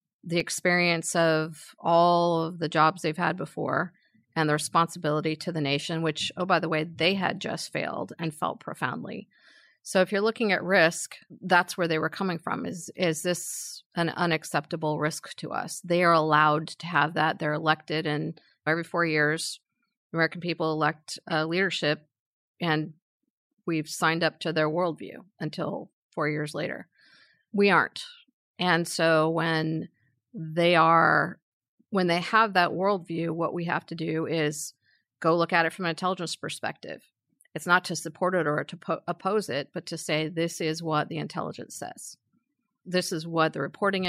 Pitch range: 155-180 Hz